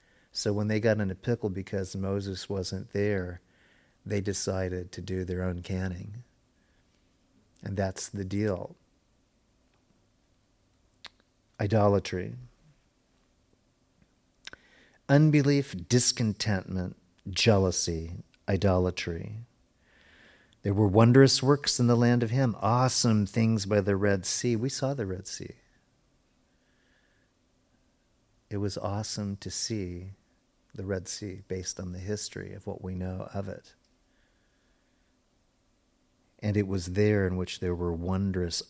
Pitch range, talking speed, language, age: 95-110 Hz, 115 wpm, English, 40-59